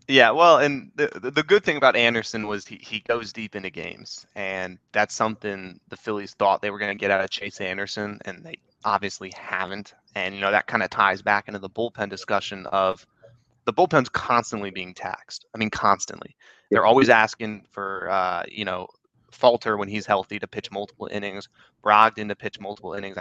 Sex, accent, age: male, American, 20-39